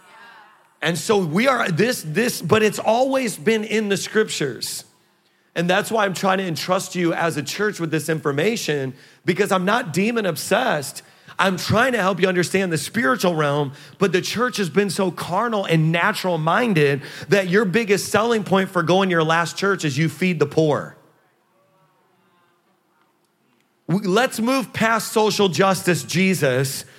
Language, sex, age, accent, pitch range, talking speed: English, male, 30-49, American, 165-220 Hz, 160 wpm